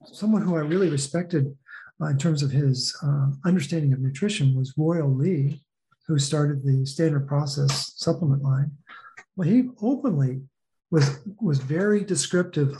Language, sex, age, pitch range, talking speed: English, male, 50-69, 145-180 Hz, 145 wpm